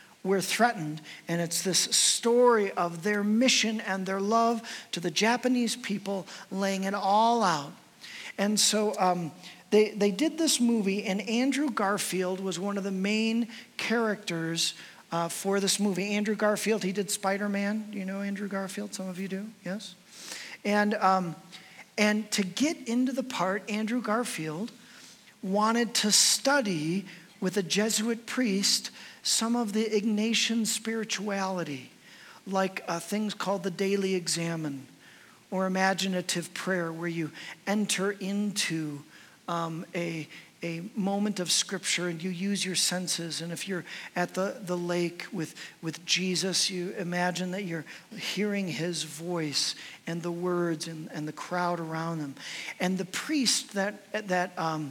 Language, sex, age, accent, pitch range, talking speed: English, male, 50-69, American, 175-215 Hz, 150 wpm